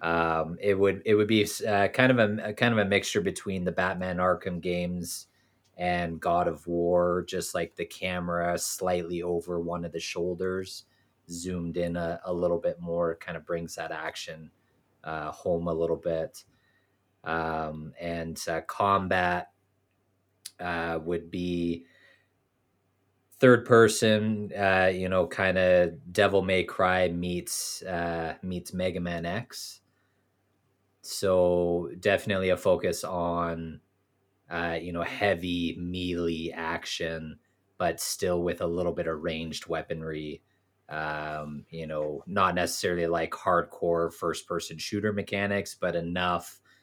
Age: 30-49